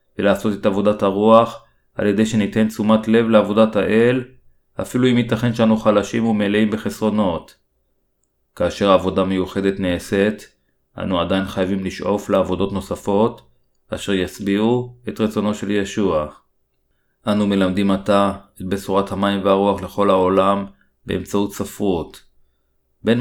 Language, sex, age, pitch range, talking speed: Hebrew, male, 30-49, 95-105 Hz, 120 wpm